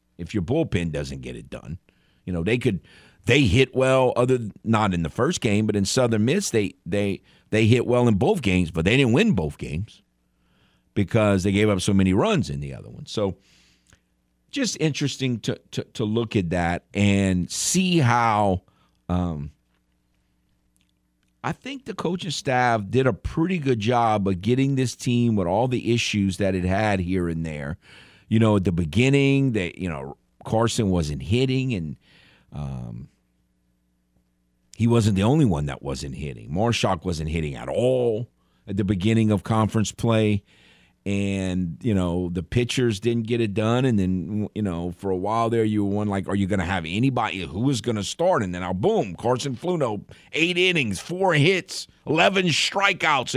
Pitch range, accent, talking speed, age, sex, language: 85-125 Hz, American, 180 wpm, 50-69, male, English